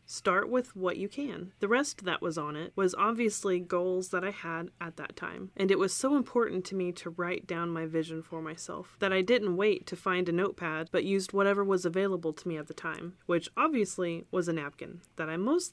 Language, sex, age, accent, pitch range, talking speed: English, female, 30-49, American, 165-195 Hz, 230 wpm